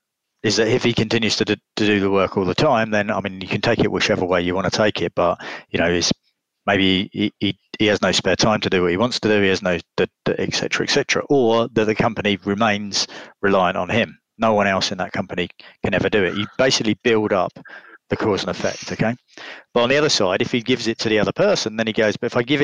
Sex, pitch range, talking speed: male, 100-115 Hz, 275 wpm